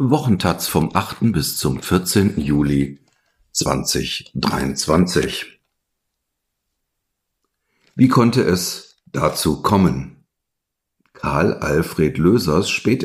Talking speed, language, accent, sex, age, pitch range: 80 wpm, German, German, male, 60-79, 80-105 Hz